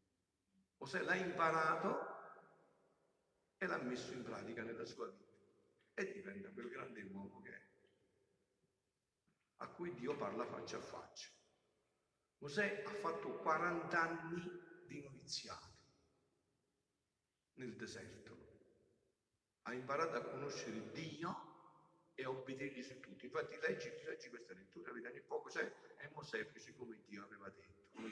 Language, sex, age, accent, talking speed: Italian, male, 50-69, native, 130 wpm